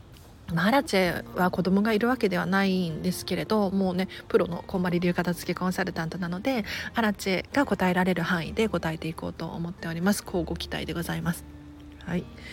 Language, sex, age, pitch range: Japanese, female, 40-59, 170-230 Hz